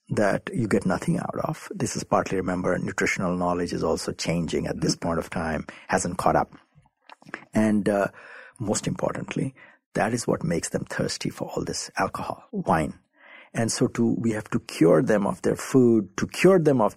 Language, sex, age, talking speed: English, male, 60-79, 185 wpm